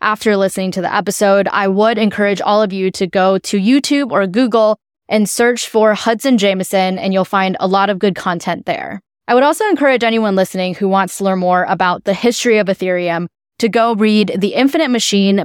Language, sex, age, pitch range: English, female, 10-29, 185-230 Hz